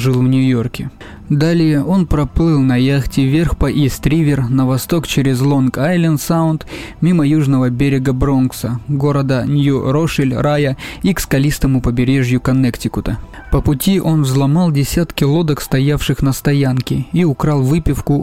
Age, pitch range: 20-39, 130-155 Hz